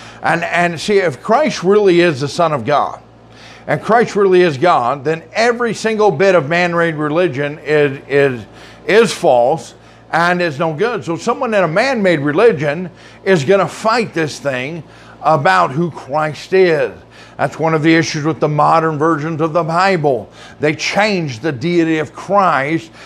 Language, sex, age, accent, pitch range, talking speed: English, male, 50-69, American, 150-185 Hz, 170 wpm